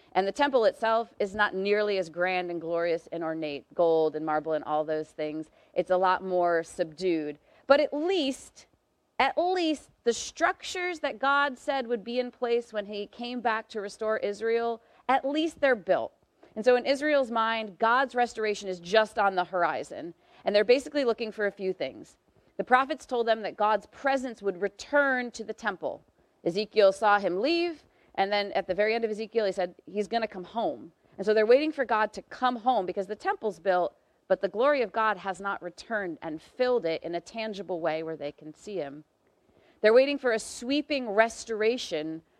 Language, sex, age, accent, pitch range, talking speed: English, female, 30-49, American, 190-255 Hz, 200 wpm